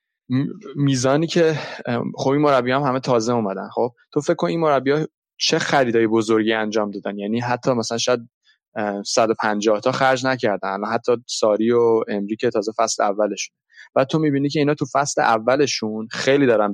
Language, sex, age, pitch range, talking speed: Persian, male, 20-39, 110-130 Hz, 165 wpm